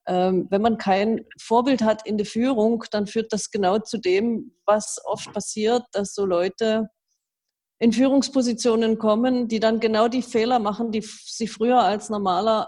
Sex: female